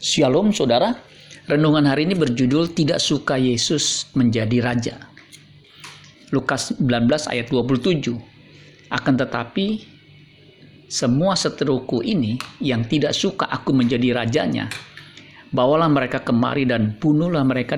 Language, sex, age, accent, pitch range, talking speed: Indonesian, male, 50-69, native, 125-150 Hz, 110 wpm